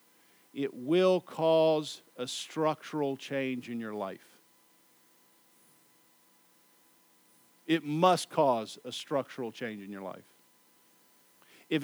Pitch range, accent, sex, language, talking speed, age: 160-215 Hz, American, male, English, 95 wpm, 50-69